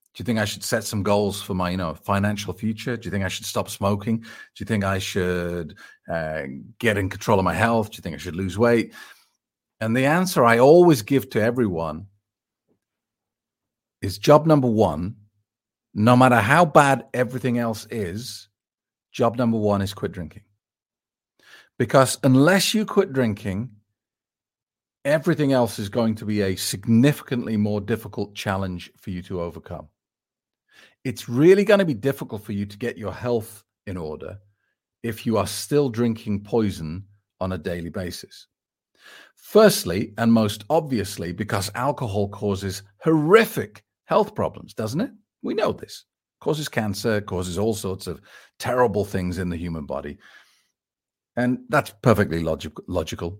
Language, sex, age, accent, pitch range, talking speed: English, male, 40-59, British, 95-125 Hz, 155 wpm